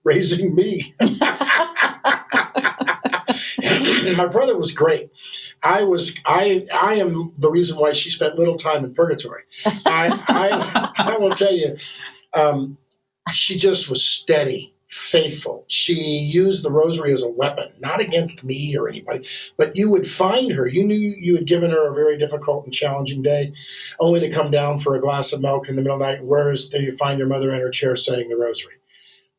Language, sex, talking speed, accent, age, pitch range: English, male, 180 wpm, American, 50-69, 135-185 Hz